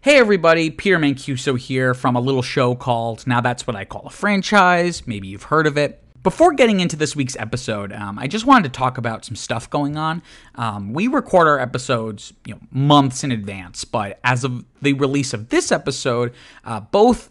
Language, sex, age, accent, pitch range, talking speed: English, male, 30-49, American, 120-160 Hz, 200 wpm